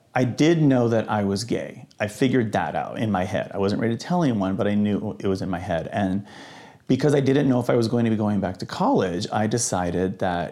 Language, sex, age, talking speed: English, male, 40-59, 260 wpm